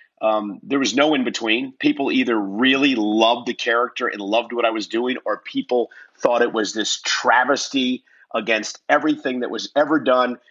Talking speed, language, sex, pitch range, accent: 175 wpm, English, male, 110-150 Hz, American